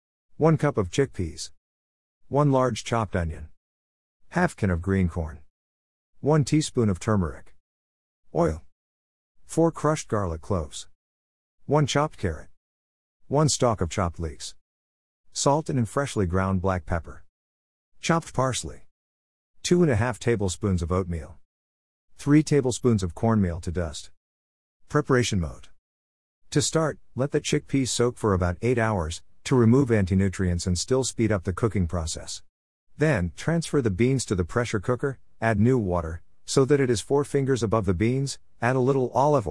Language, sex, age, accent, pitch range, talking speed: English, male, 50-69, American, 80-125 Hz, 150 wpm